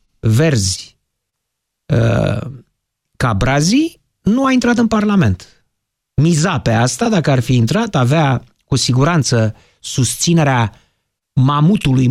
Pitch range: 125-185 Hz